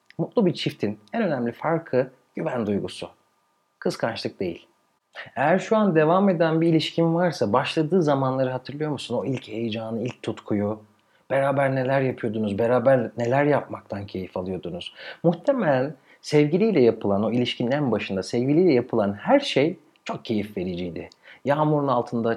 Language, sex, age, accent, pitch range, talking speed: Turkish, male, 40-59, native, 115-185 Hz, 135 wpm